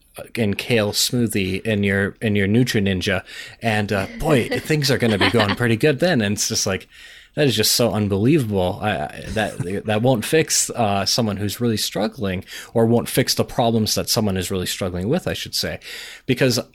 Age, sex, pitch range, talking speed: 30-49, male, 100-115 Hz, 195 wpm